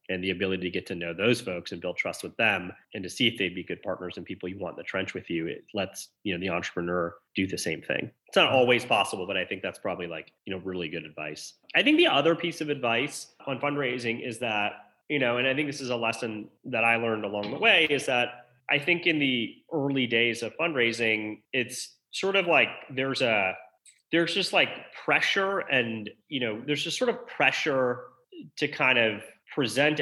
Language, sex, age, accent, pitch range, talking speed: English, male, 30-49, American, 105-135 Hz, 230 wpm